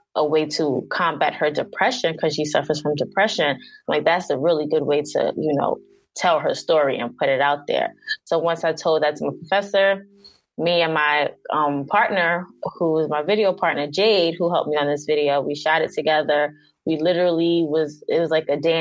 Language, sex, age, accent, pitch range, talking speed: English, female, 20-39, American, 150-180 Hz, 205 wpm